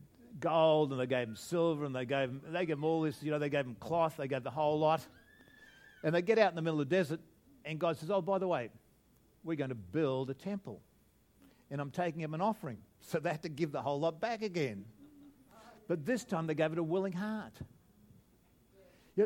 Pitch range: 135-185 Hz